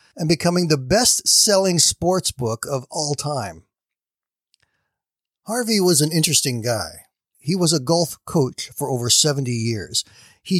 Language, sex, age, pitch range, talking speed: English, male, 50-69, 130-175 Hz, 140 wpm